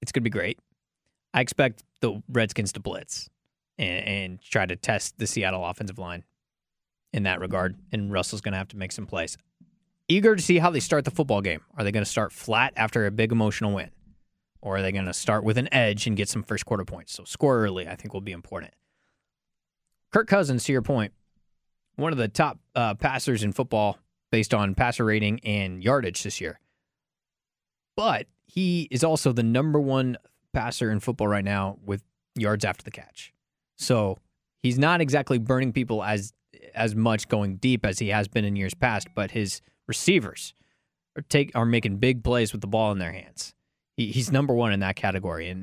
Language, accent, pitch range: English, American, 100-125 Hz